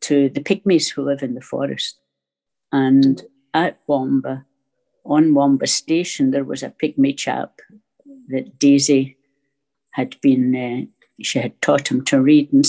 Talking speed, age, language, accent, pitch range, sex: 145 wpm, 60-79, English, British, 135-180 Hz, female